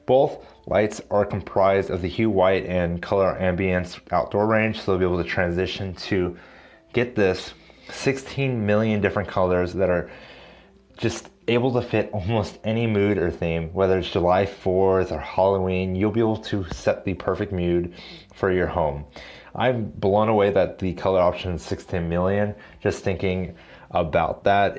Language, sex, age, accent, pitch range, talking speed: English, male, 30-49, American, 90-105 Hz, 165 wpm